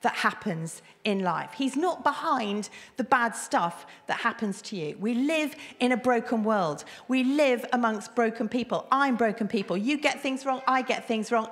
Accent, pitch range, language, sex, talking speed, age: British, 220-290 Hz, English, female, 190 wpm, 40-59